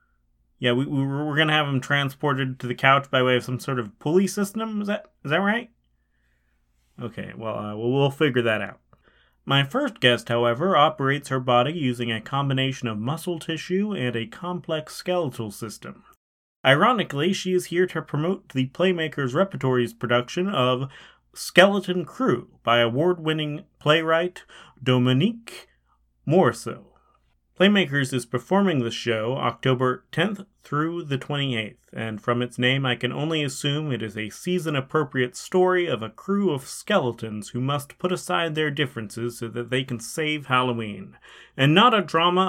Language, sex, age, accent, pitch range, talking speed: English, male, 30-49, American, 120-155 Hz, 160 wpm